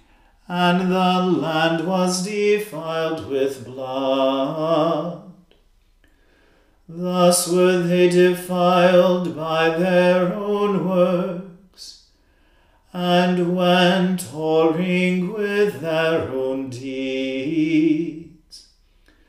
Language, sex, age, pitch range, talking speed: English, male, 40-59, 165-180 Hz, 70 wpm